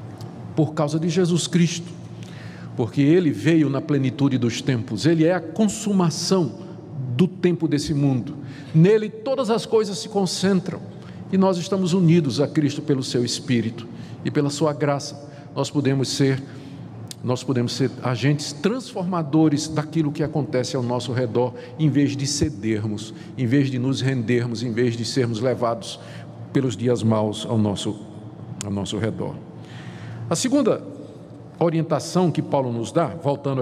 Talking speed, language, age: 145 wpm, Portuguese, 50-69